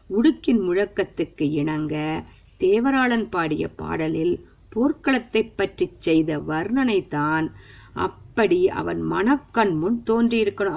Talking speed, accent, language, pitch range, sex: 90 wpm, native, Tamil, 160-240 Hz, female